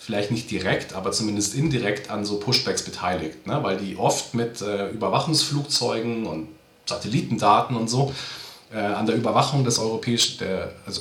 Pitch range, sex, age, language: 105-135 Hz, male, 40-59, German